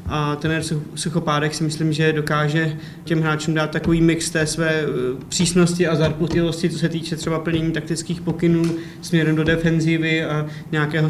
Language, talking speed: Czech, 155 wpm